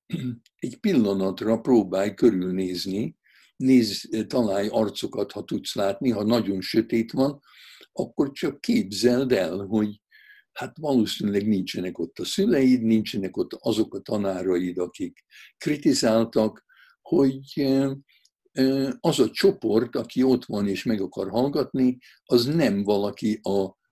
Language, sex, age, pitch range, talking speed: Hungarian, male, 60-79, 95-130 Hz, 120 wpm